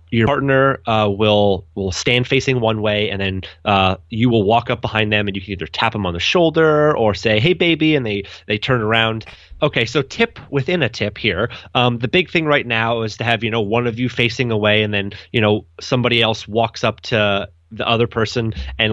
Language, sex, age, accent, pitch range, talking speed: English, male, 30-49, American, 100-125 Hz, 230 wpm